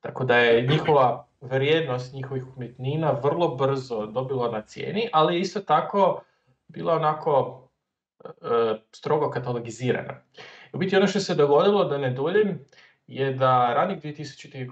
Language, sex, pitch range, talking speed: Croatian, male, 125-180 Hz, 140 wpm